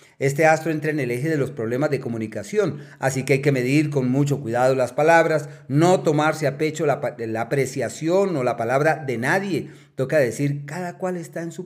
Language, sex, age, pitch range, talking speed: Spanish, male, 40-59, 125-150 Hz, 205 wpm